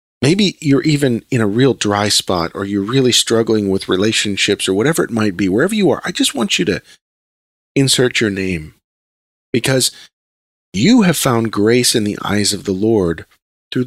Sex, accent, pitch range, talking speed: male, American, 95-135 Hz, 180 wpm